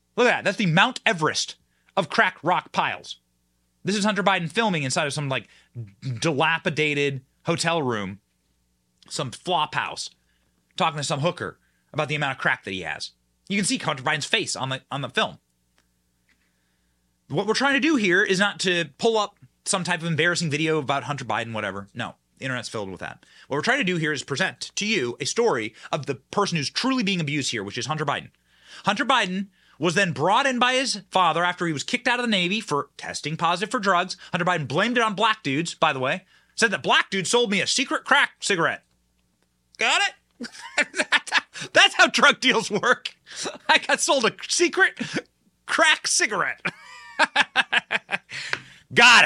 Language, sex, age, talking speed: English, male, 30-49, 190 wpm